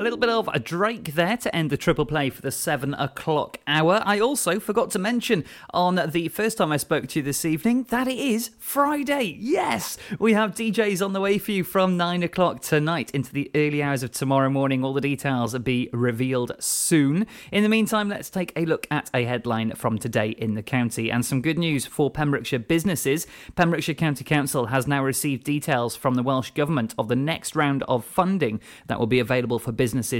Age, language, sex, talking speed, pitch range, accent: 30-49, English, male, 215 wpm, 115-155 Hz, British